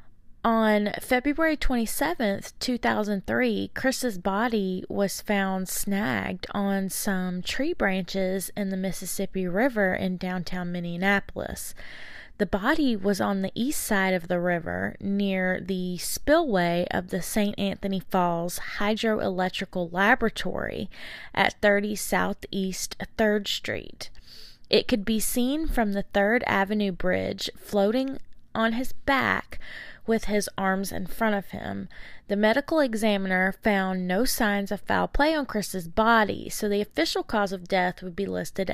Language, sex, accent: English, female, American